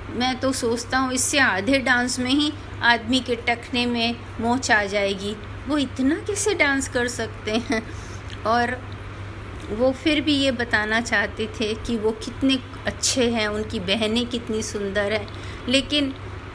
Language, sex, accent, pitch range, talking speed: Hindi, female, native, 190-245 Hz, 150 wpm